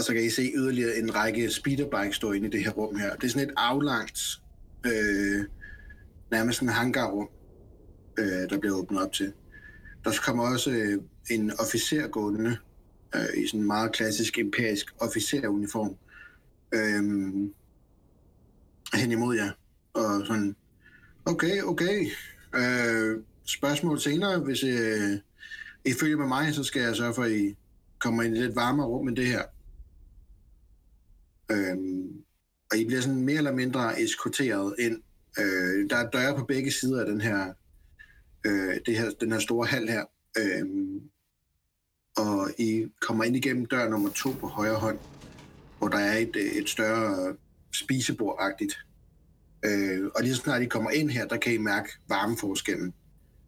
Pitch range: 100-130 Hz